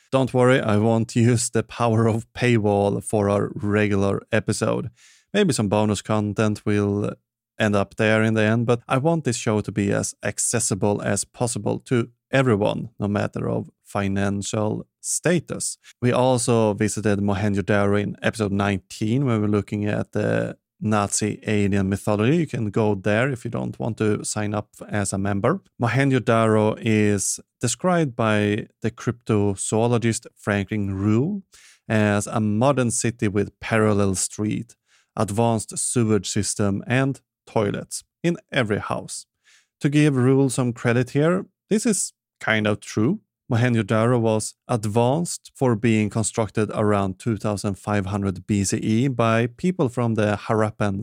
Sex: male